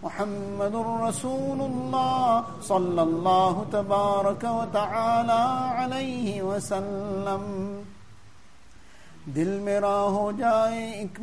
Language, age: English, 50-69